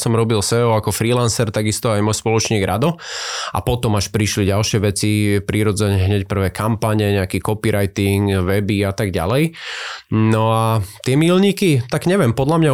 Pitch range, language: 105-125 Hz, Slovak